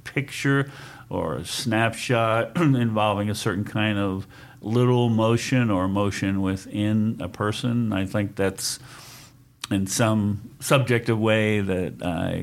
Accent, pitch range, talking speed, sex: American, 95-125 Hz, 120 wpm, male